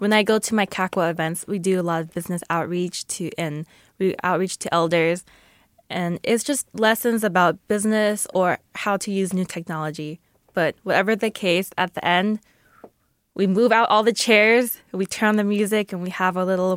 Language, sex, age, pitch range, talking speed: English, female, 20-39, 170-205 Hz, 195 wpm